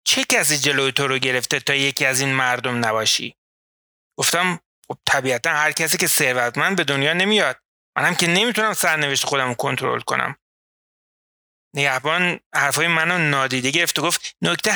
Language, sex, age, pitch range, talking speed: Persian, male, 30-49, 135-185 Hz, 140 wpm